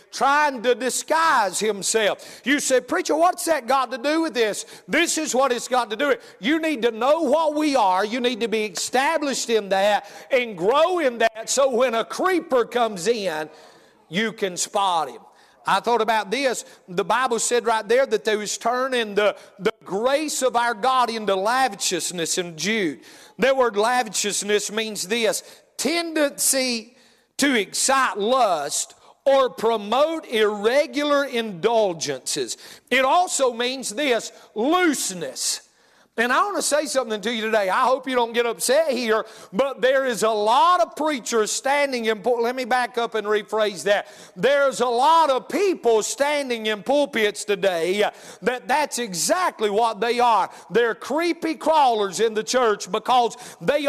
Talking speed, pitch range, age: 165 wpm, 220-280 Hz, 40-59